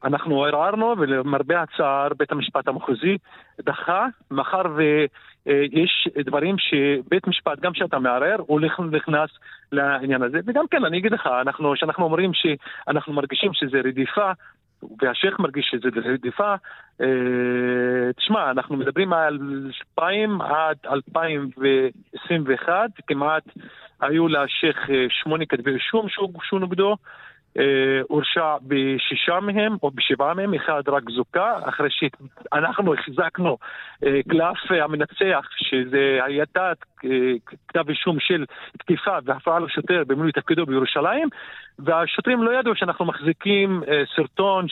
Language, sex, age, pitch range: Hebrew, male, 40-59, 140-185 Hz